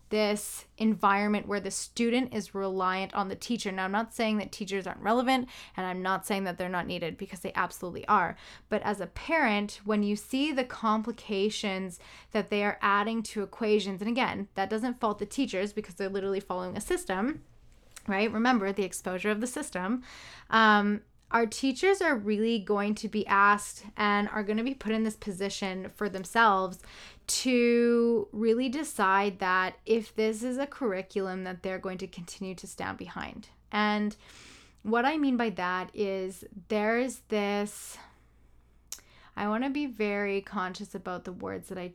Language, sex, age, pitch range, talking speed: English, female, 10-29, 190-225 Hz, 175 wpm